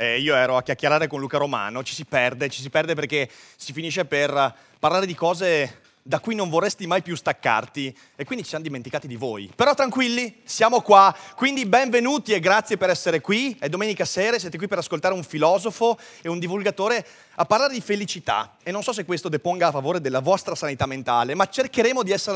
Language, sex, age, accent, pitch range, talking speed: Italian, male, 30-49, native, 150-205 Hz, 210 wpm